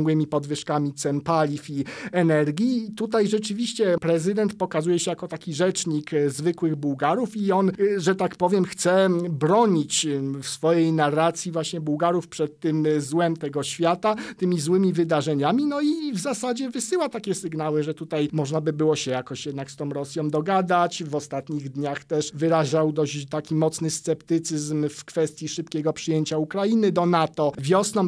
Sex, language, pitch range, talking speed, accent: male, Polish, 155-180 Hz, 150 wpm, native